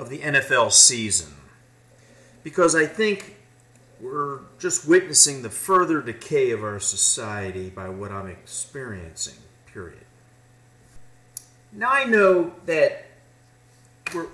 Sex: male